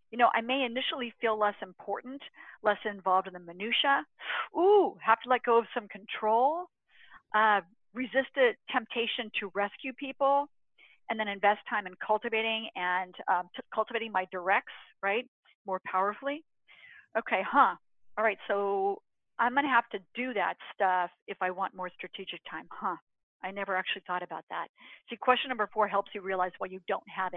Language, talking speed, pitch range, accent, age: English, 170 wpm, 195-235 Hz, American, 50-69